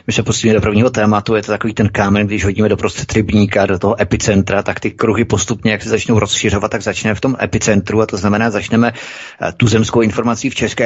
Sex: male